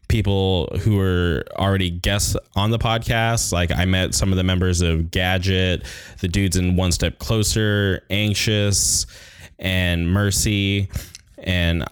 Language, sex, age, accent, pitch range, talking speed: English, male, 20-39, American, 90-100 Hz, 135 wpm